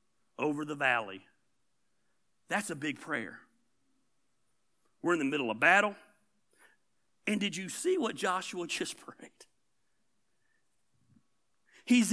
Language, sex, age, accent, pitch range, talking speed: English, male, 40-59, American, 190-280 Hz, 110 wpm